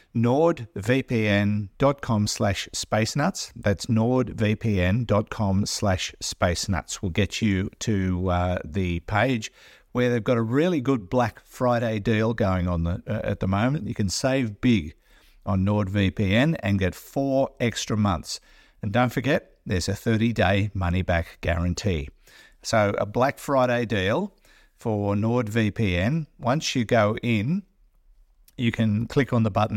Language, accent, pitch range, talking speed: English, Australian, 95-120 Hz, 140 wpm